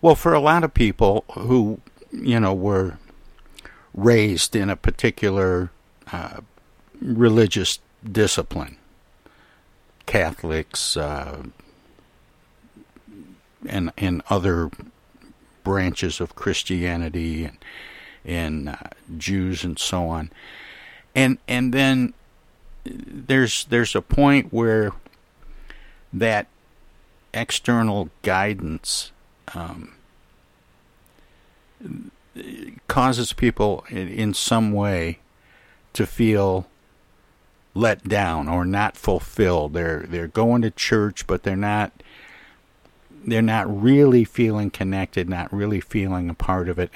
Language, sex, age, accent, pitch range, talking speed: English, male, 60-79, American, 85-110 Hz, 95 wpm